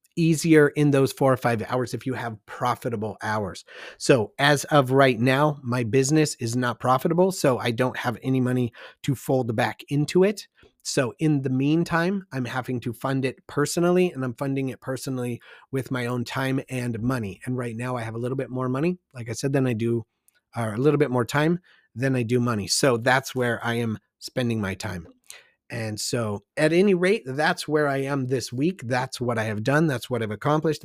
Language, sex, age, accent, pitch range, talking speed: English, male, 30-49, American, 125-155 Hz, 210 wpm